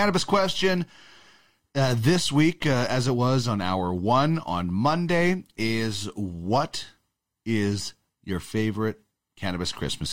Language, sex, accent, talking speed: English, male, American, 125 wpm